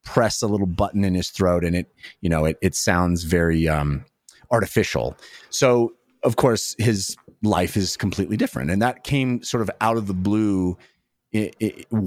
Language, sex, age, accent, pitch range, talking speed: English, male, 30-49, American, 95-120 Hz, 180 wpm